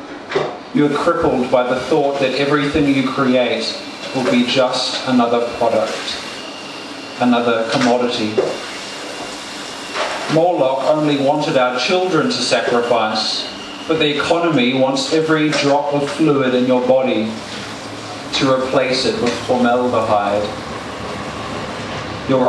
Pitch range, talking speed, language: 120-145 Hz, 110 wpm, English